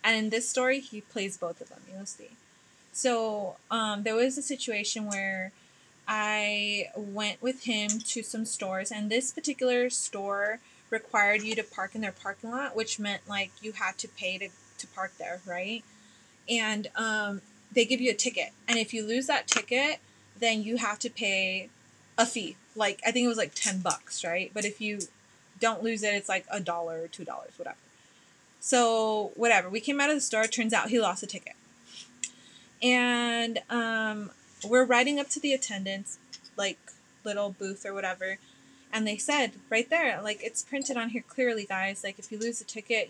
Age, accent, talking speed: 20-39, American, 190 wpm